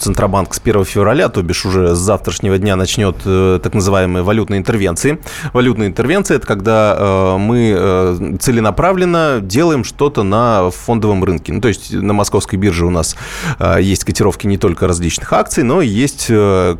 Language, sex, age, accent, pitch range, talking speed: Russian, male, 20-39, native, 95-125 Hz, 155 wpm